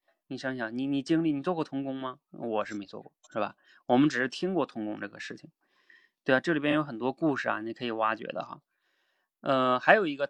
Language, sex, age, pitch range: Chinese, male, 20-39, 125-170 Hz